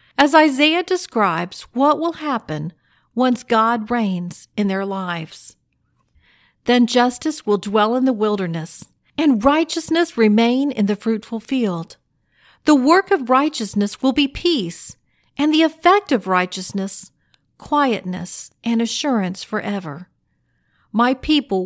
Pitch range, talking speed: 195-285 Hz, 120 wpm